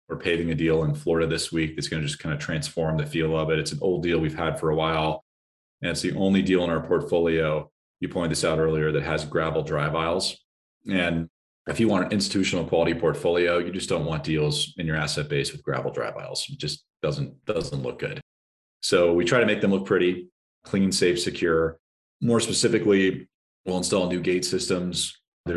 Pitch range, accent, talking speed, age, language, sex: 80-85 Hz, American, 215 wpm, 30-49, English, male